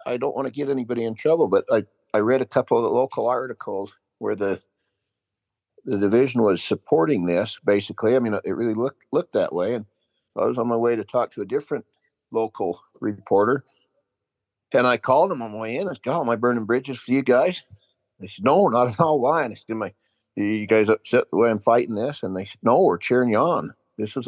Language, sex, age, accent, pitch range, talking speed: English, male, 50-69, American, 100-115 Hz, 240 wpm